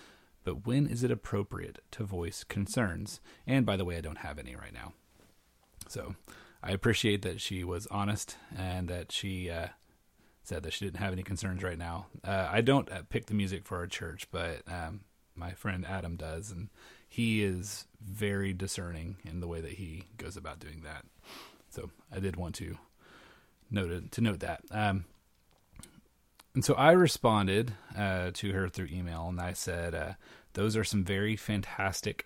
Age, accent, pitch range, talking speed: 30-49, American, 90-110 Hz, 180 wpm